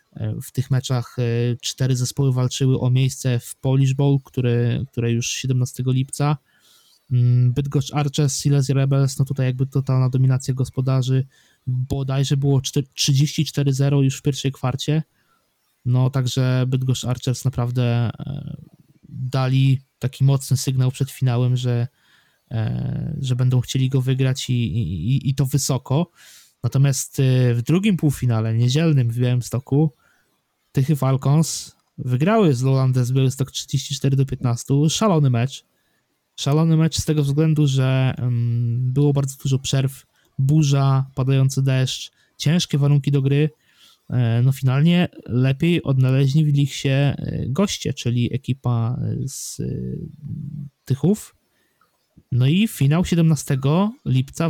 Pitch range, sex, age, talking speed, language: 125-145 Hz, male, 20-39, 120 wpm, Polish